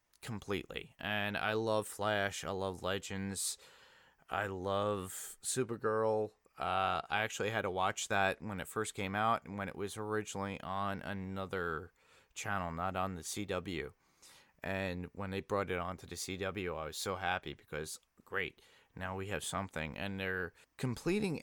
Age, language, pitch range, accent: 30-49, English, 95-115 Hz, American